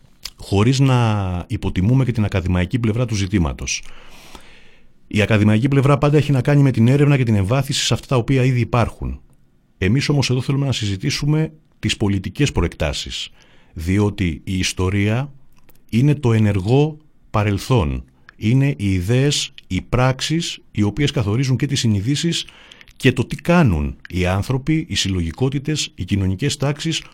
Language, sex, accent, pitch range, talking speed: Greek, male, native, 100-140 Hz, 145 wpm